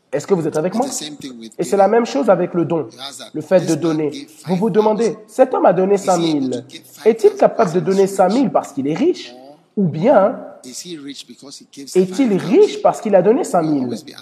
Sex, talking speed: male, 200 wpm